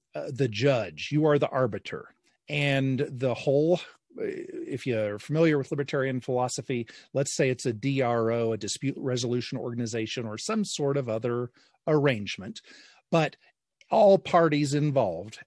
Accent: American